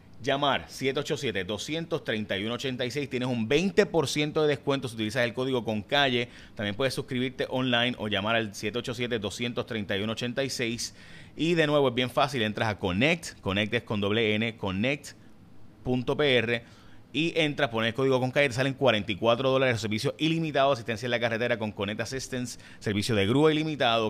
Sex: male